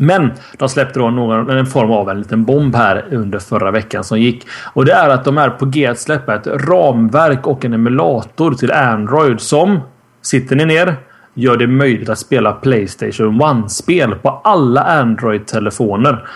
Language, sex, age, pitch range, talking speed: Swedish, male, 30-49, 110-135 Hz, 170 wpm